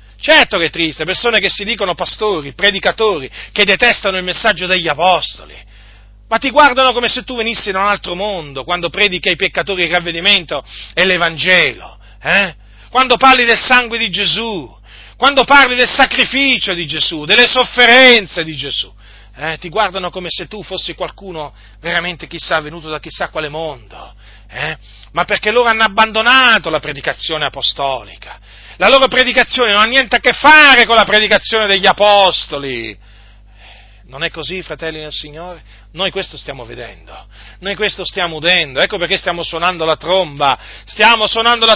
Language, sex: Italian, male